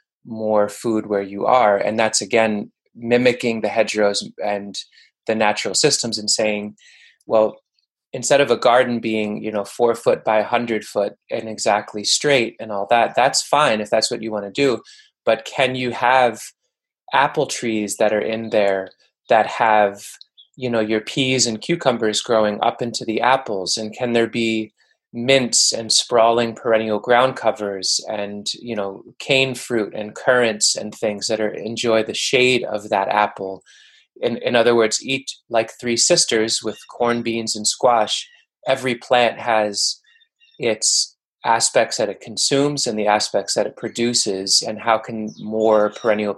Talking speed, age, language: 165 wpm, 20-39, English